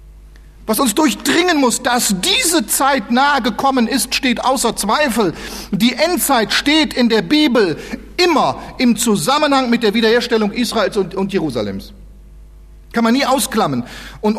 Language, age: German, 50-69